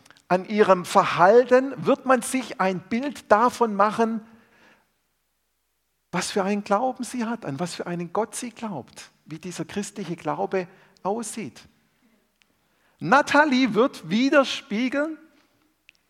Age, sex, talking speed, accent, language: 50-69, male, 115 wpm, German, German